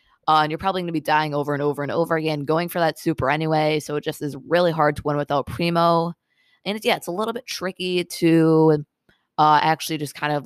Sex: female